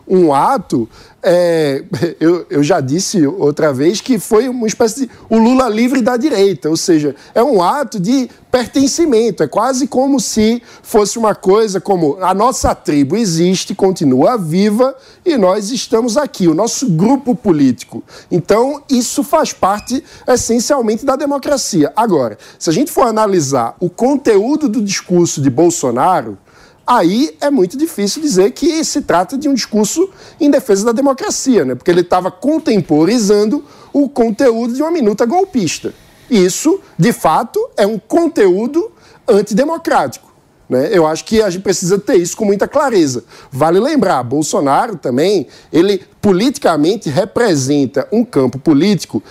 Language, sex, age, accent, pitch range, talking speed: Portuguese, male, 50-69, Brazilian, 180-275 Hz, 145 wpm